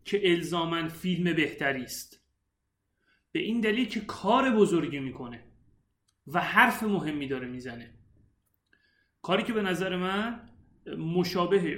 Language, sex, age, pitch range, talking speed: Persian, male, 30-49, 150-200 Hz, 110 wpm